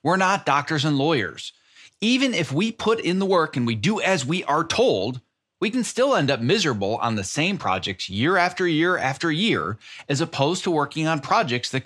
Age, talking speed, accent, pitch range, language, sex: 30-49, 210 wpm, American, 125-175 Hz, English, male